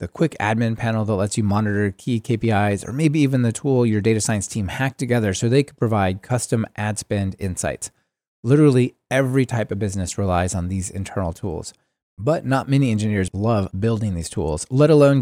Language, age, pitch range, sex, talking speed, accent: English, 30-49, 100-135 Hz, male, 195 wpm, American